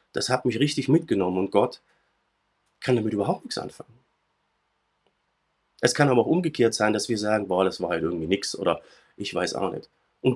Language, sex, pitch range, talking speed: German, male, 105-150 Hz, 190 wpm